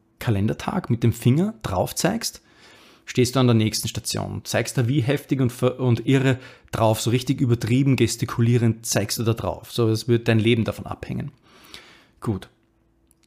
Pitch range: 115-135 Hz